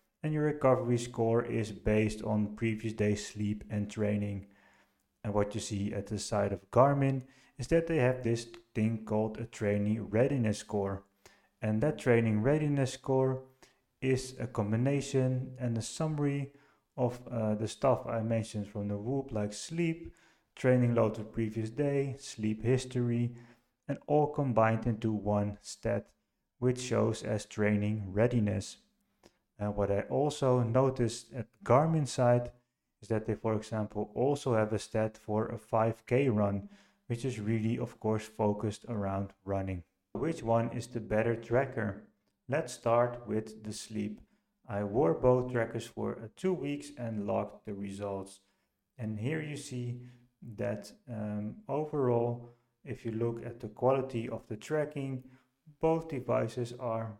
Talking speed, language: 150 wpm, English